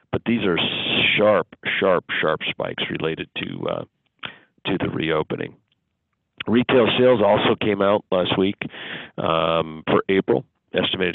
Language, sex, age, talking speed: English, male, 50-69, 130 wpm